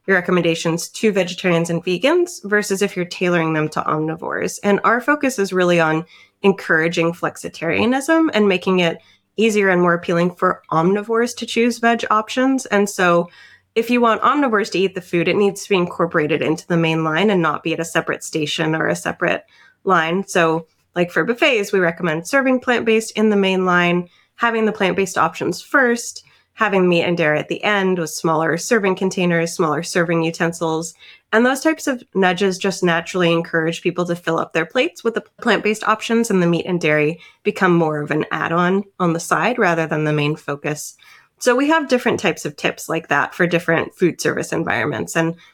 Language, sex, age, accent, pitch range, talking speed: English, female, 20-39, American, 165-210 Hz, 190 wpm